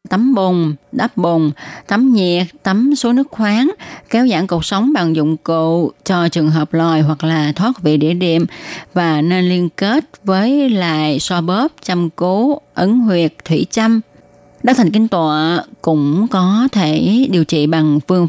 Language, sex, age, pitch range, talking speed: Vietnamese, female, 20-39, 160-210 Hz, 175 wpm